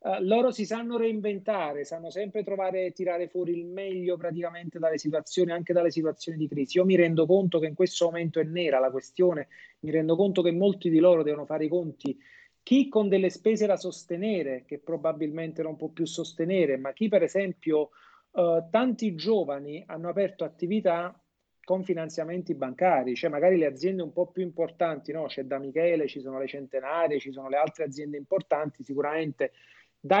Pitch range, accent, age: 155-190 Hz, native, 40-59